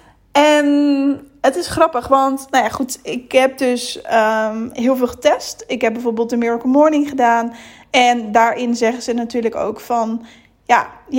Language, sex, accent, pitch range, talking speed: Dutch, female, Dutch, 235-275 Hz, 145 wpm